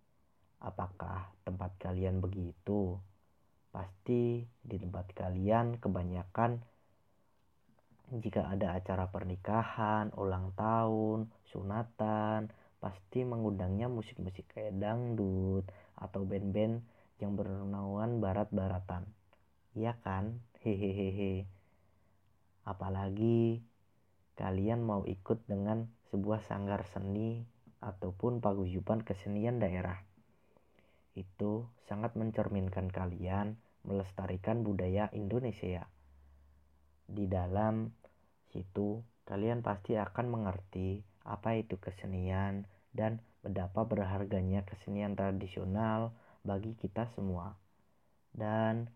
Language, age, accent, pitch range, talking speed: Indonesian, 20-39, native, 95-110 Hz, 80 wpm